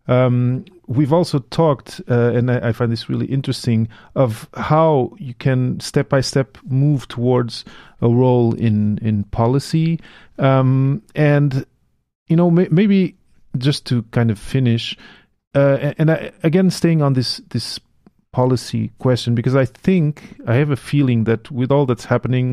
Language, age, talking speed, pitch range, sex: English, 40-59, 155 wpm, 115-135 Hz, male